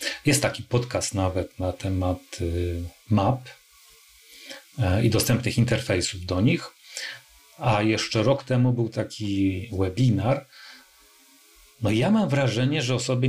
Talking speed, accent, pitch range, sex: 115 wpm, native, 105-135 Hz, male